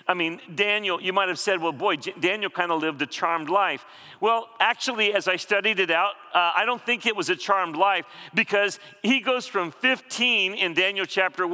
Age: 40-59